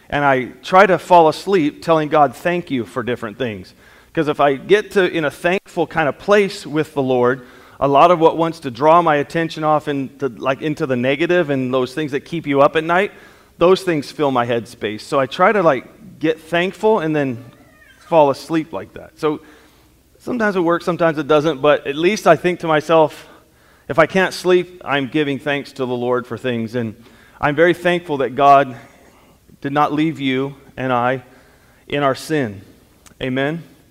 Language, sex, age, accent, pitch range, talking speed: English, male, 30-49, American, 130-165 Hz, 200 wpm